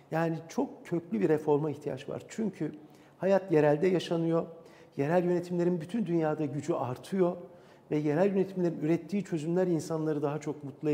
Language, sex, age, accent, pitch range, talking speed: Turkish, male, 50-69, native, 145-175 Hz, 145 wpm